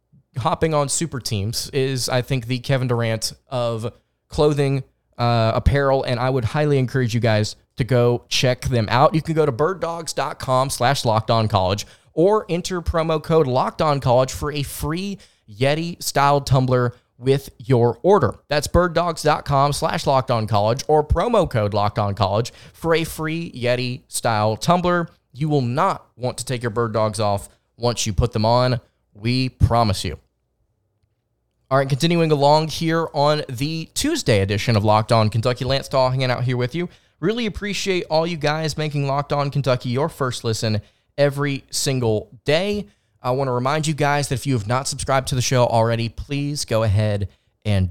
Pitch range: 120-150 Hz